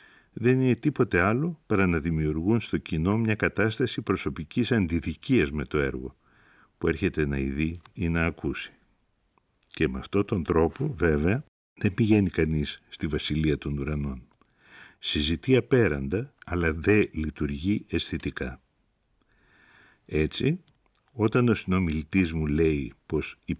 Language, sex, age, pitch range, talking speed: Greek, male, 60-79, 75-100 Hz, 125 wpm